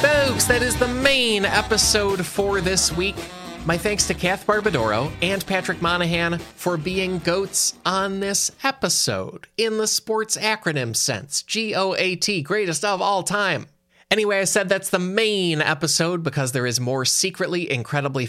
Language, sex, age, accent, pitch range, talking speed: English, male, 20-39, American, 135-195 Hz, 150 wpm